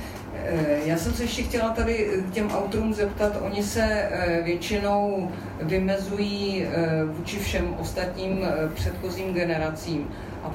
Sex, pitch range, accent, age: female, 160-190 Hz, native, 40-59